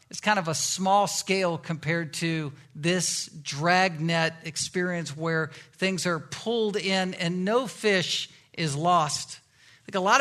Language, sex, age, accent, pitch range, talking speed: English, male, 50-69, American, 180-220 Hz, 140 wpm